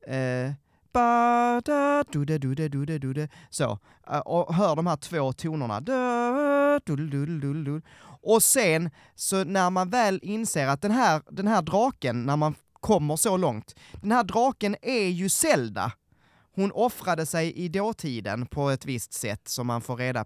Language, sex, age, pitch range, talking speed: Swedish, male, 20-39, 130-200 Hz, 140 wpm